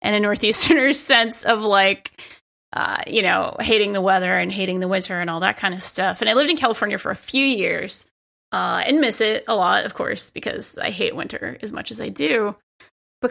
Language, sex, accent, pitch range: English, female, American, 200-280 Hz